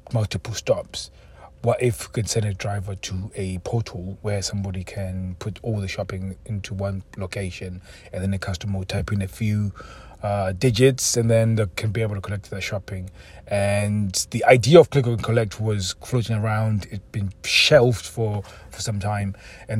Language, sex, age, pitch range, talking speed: English, male, 30-49, 95-115 Hz, 185 wpm